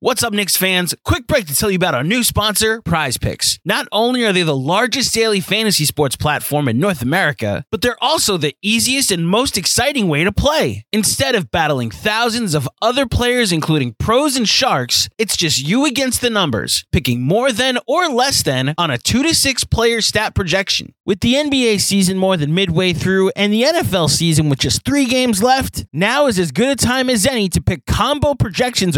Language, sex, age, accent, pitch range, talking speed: English, male, 20-39, American, 155-245 Hz, 205 wpm